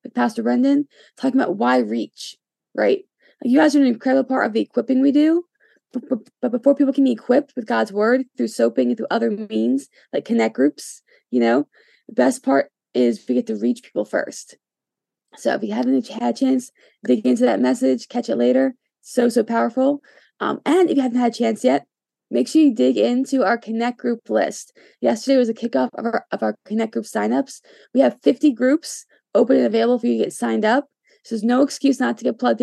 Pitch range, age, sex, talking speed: 195-275 Hz, 20-39, female, 215 wpm